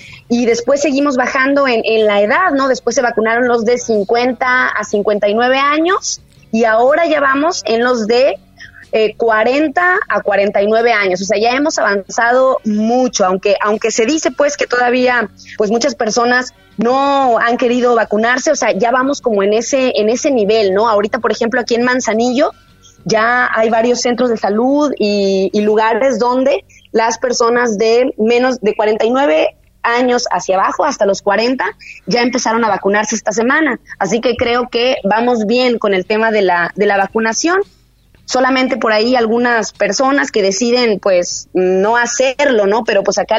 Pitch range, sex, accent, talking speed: 210-250 Hz, female, Mexican, 170 wpm